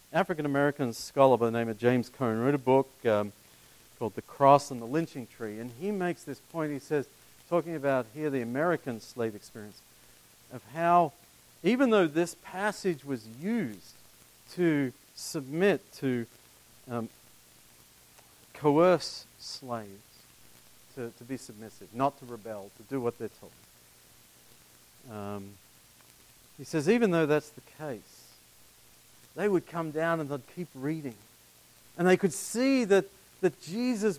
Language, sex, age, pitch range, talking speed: English, male, 50-69, 110-185 Hz, 145 wpm